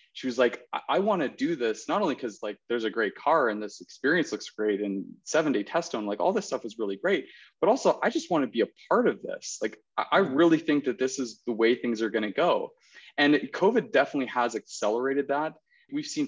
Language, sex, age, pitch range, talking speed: English, male, 20-39, 110-155 Hz, 250 wpm